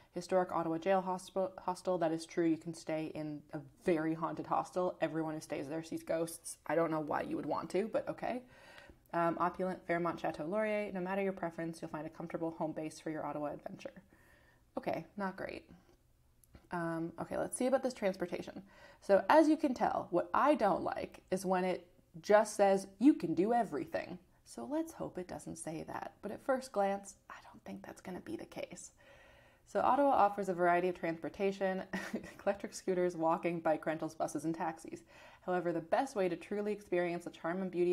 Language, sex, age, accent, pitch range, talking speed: English, female, 20-39, American, 165-195 Hz, 195 wpm